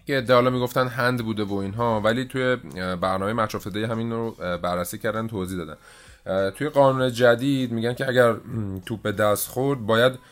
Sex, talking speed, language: male, 170 wpm, Persian